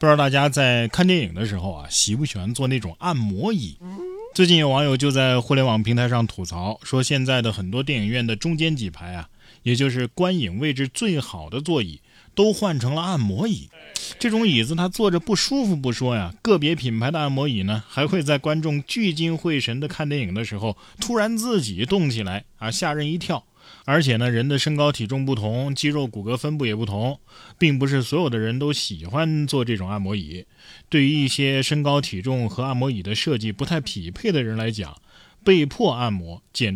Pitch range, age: 110-155 Hz, 20-39